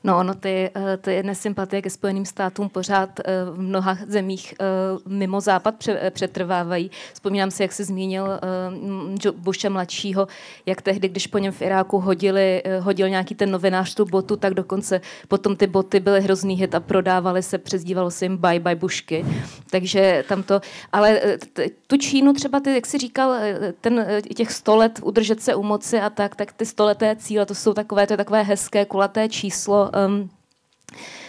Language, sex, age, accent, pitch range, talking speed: Czech, female, 20-39, native, 190-220 Hz, 160 wpm